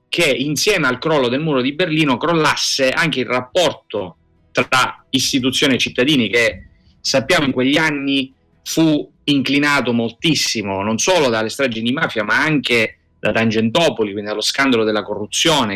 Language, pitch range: Italian, 110-155 Hz